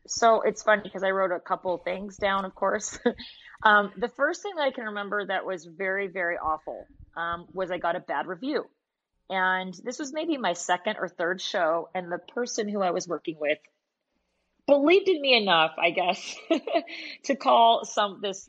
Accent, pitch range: American, 175-220 Hz